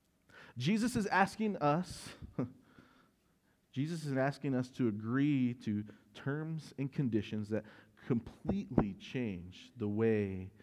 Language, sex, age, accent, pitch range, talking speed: English, male, 40-59, American, 100-135 Hz, 105 wpm